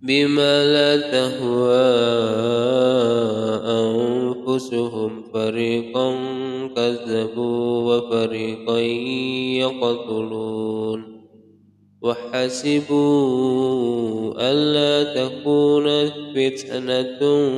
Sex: male